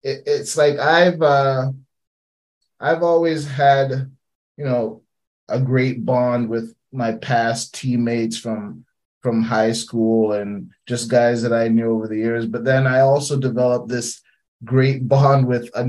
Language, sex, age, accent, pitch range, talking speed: English, male, 30-49, American, 115-135 Hz, 145 wpm